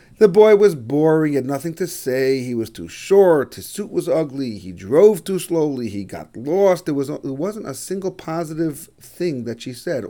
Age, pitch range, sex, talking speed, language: 40-59, 125-185 Hz, male, 210 wpm, English